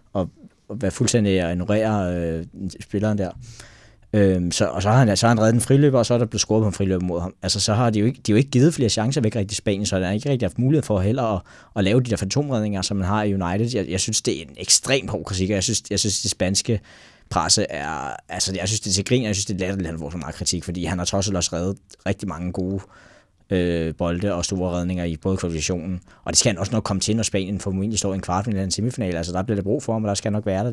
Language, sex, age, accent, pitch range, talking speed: Danish, male, 20-39, native, 90-110 Hz, 290 wpm